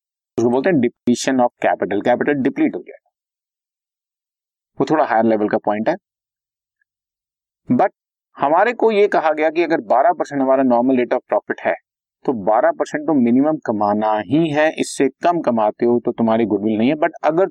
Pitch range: 120-160 Hz